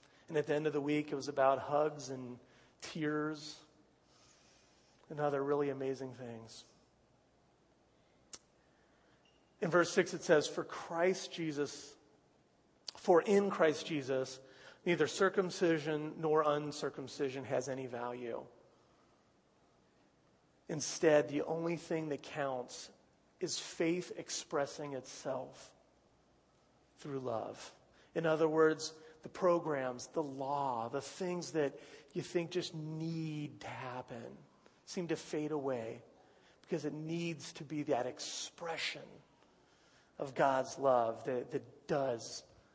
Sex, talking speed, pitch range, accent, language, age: male, 115 wpm, 135-165 Hz, American, English, 40-59